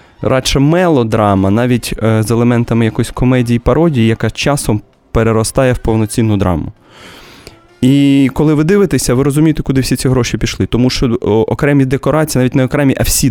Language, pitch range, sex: Russian, 100-130 Hz, male